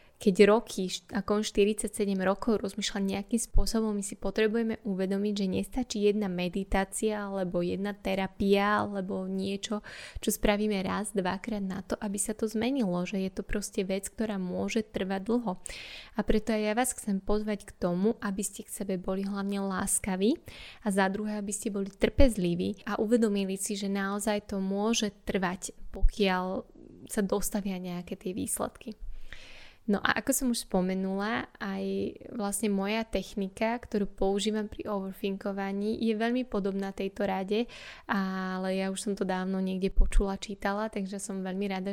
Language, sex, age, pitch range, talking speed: Slovak, female, 10-29, 195-215 Hz, 155 wpm